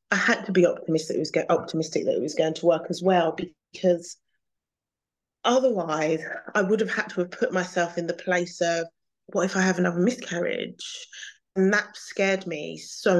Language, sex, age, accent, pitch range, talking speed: English, female, 30-49, British, 165-195 Hz, 190 wpm